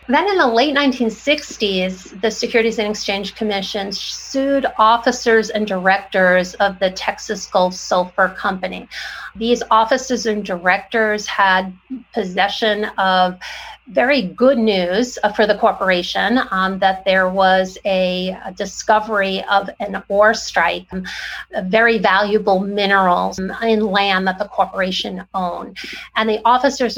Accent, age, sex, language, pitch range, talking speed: American, 40-59, female, English, 190-230 Hz, 125 wpm